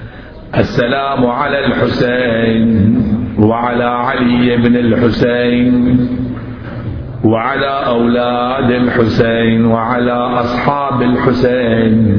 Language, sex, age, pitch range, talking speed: Arabic, male, 50-69, 110-125 Hz, 65 wpm